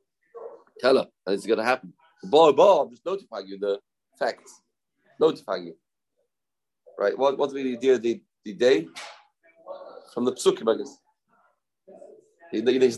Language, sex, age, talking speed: English, male, 40-59, 145 wpm